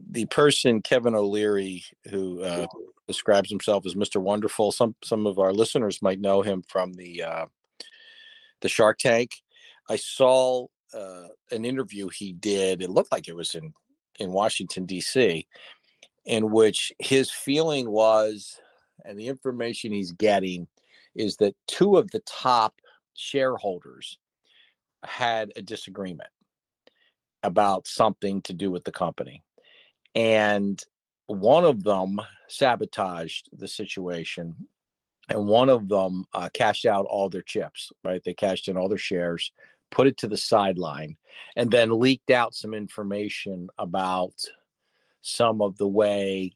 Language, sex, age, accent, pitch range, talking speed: English, male, 50-69, American, 95-115 Hz, 140 wpm